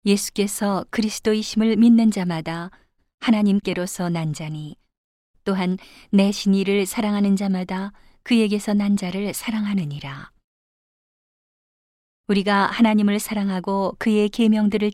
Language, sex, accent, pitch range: Korean, female, native, 175-210 Hz